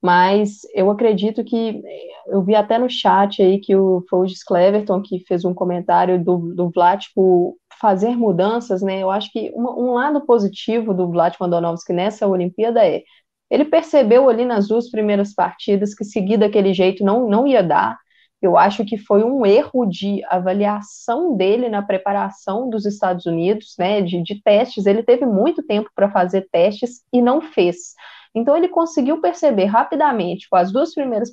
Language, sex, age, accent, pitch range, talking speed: Portuguese, female, 20-39, Brazilian, 200-275 Hz, 170 wpm